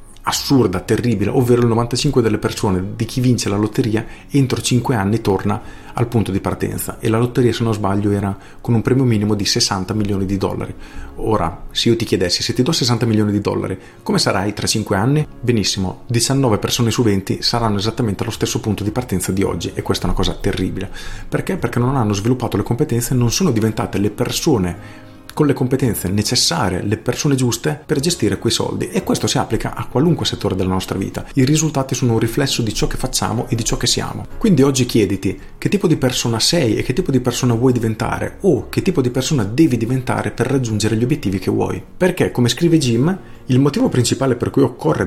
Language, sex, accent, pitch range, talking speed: Italian, male, native, 100-125 Hz, 210 wpm